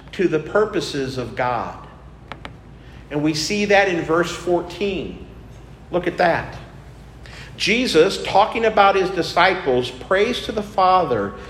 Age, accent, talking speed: 50-69, American, 125 wpm